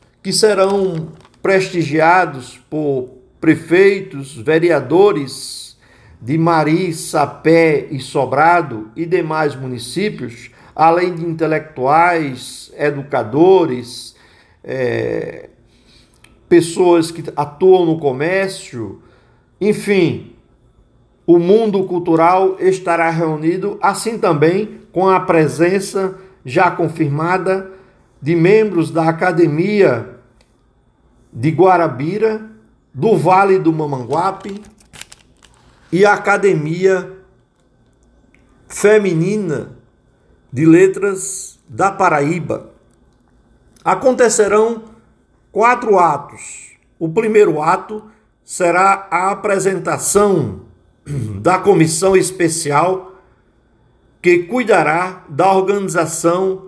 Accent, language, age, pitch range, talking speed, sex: Brazilian, Portuguese, 50-69, 145-190 Hz, 75 wpm, male